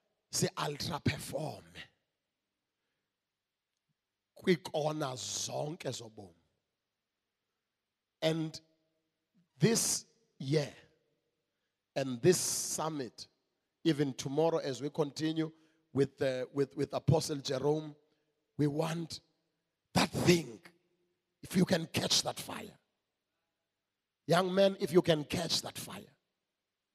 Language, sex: English, male